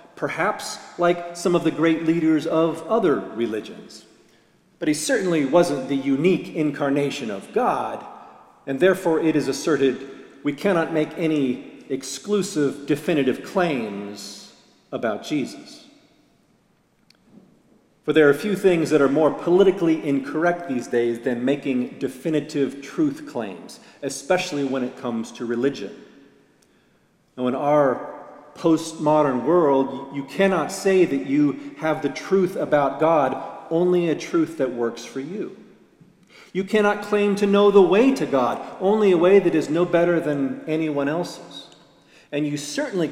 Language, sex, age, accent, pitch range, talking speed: English, male, 40-59, American, 135-175 Hz, 140 wpm